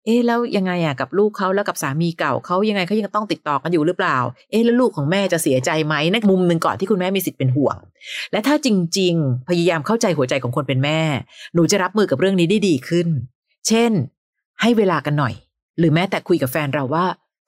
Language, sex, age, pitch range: Thai, female, 30-49, 155-200 Hz